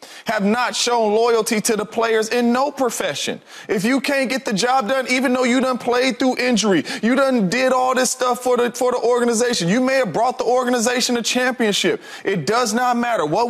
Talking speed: 215 wpm